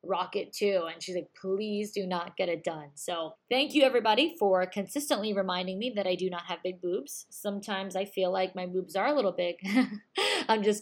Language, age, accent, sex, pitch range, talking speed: English, 20-39, American, female, 180-215 Hz, 210 wpm